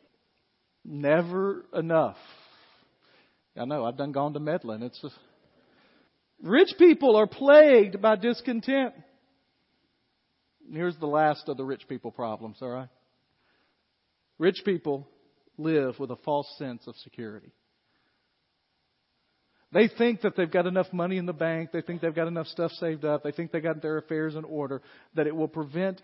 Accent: American